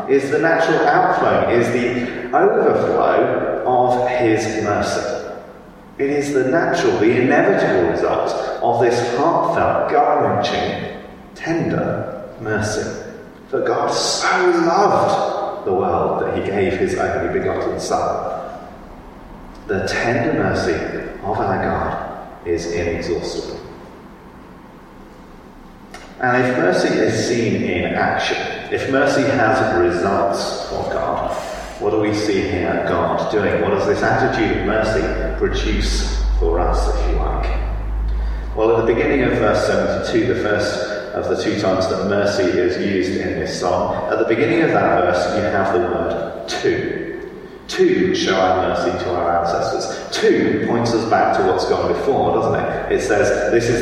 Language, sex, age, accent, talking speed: English, male, 40-59, British, 145 wpm